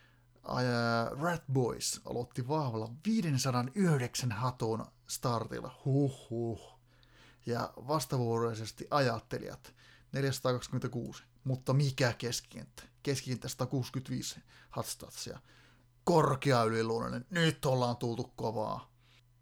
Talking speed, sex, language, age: 75 wpm, male, Finnish, 30-49